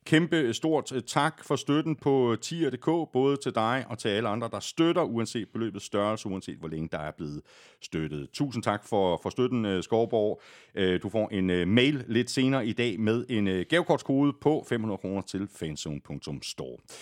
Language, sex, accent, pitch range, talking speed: Danish, male, native, 95-135 Hz, 170 wpm